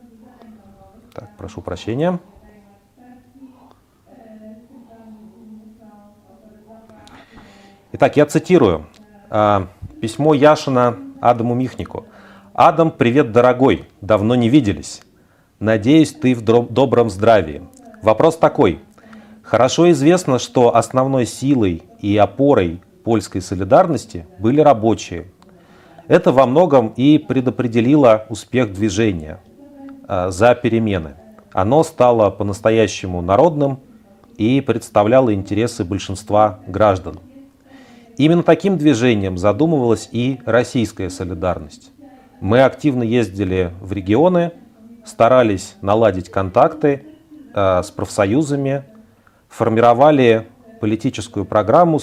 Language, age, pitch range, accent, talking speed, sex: Russian, 40-59, 105-160 Hz, native, 85 wpm, male